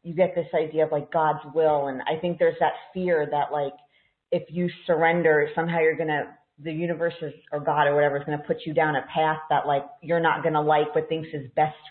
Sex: female